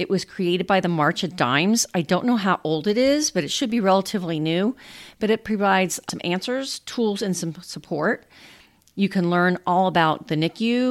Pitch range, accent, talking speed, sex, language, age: 165-200 Hz, American, 205 wpm, female, English, 40-59